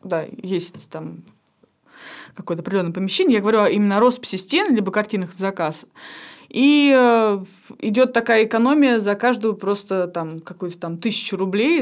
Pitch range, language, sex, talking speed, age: 185-225 Hz, Russian, female, 135 wpm, 20-39